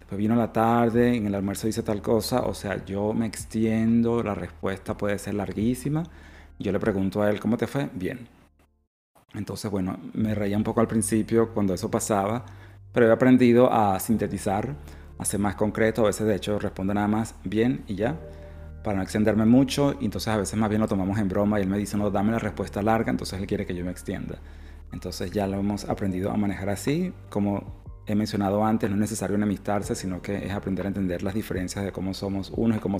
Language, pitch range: Spanish, 95-110 Hz